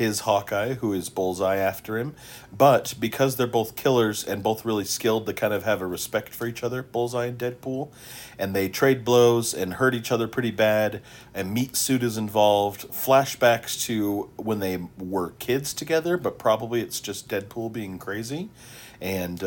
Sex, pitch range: male, 95-120 Hz